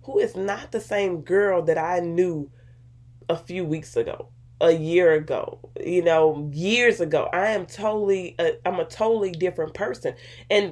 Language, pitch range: English, 150-200 Hz